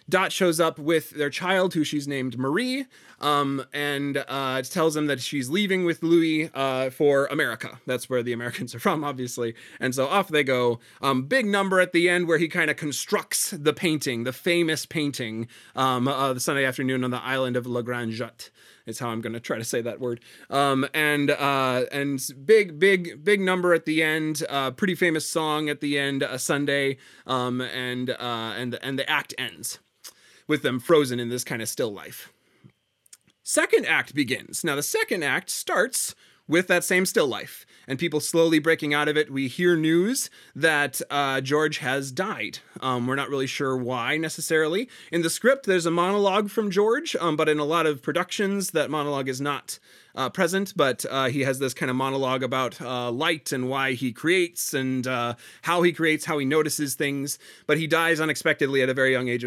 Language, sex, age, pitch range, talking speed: English, male, 20-39, 130-170 Hz, 200 wpm